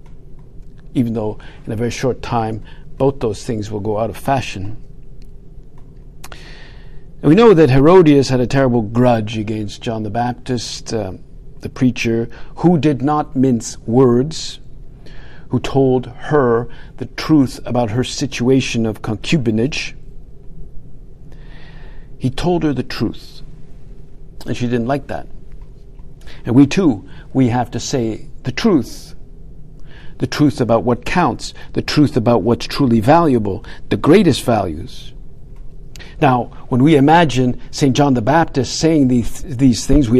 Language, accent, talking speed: English, American, 135 wpm